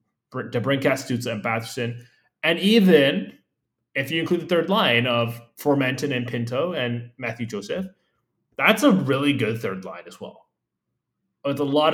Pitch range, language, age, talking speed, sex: 115-145 Hz, English, 20-39, 150 wpm, male